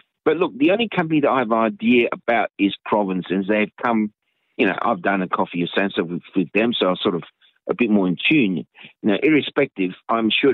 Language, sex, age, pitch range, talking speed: English, male, 50-69, 100-125 Hz, 215 wpm